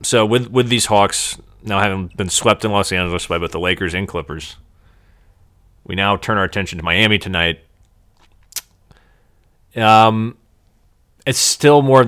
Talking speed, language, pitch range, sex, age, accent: 155 wpm, English, 85-105 Hz, male, 30-49, American